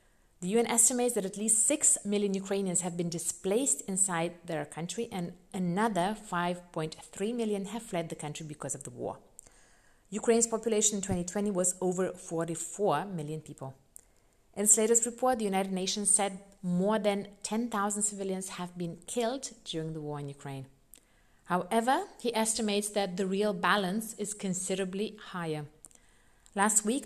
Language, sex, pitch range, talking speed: English, female, 165-215 Hz, 150 wpm